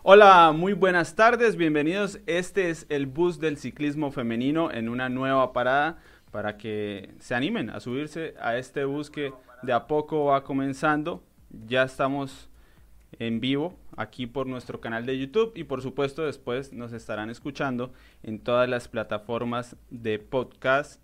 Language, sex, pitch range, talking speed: Spanish, male, 110-140 Hz, 155 wpm